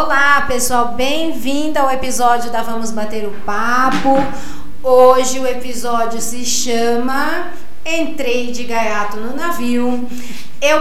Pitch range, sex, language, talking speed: 235-280 Hz, female, Portuguese, 115 wpm